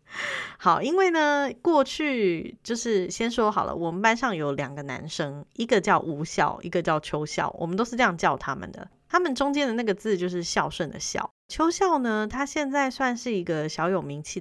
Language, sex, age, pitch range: Chinese, female, 20-39, 160-215 Hz